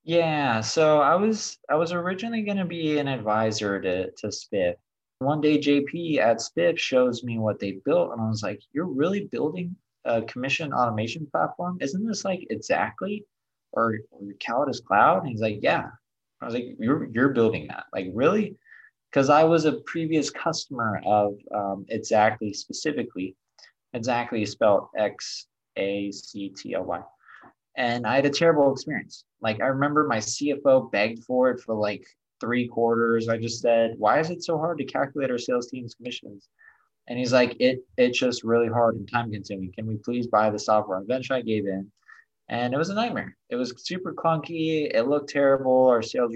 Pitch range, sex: 110-150 Hz, male